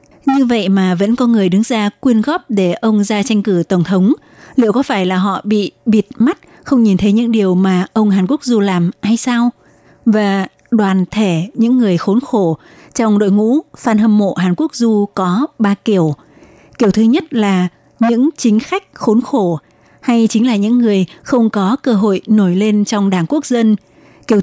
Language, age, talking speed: Vietnamese, 20-39, 200 wpm